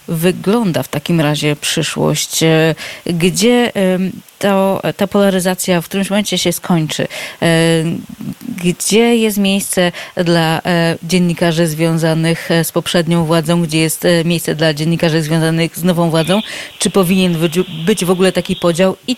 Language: Polish